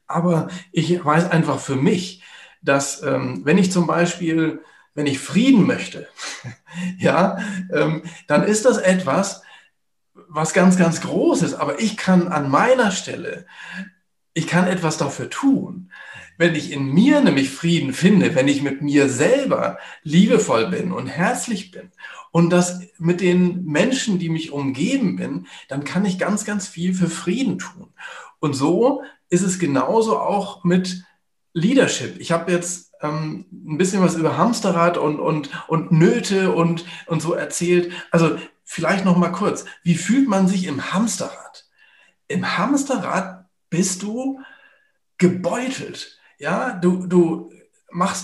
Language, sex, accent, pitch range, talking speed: German, male, German, 165-205 Hz, 140 wpm